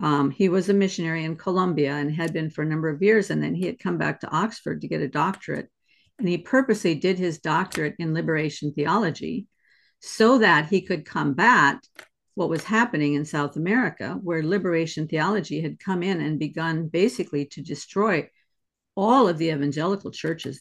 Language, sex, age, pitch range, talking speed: English, female, 50-69, 155-200 Hz, 185 wpm